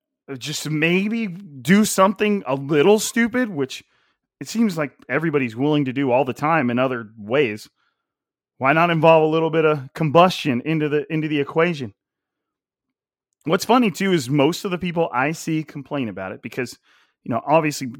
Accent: American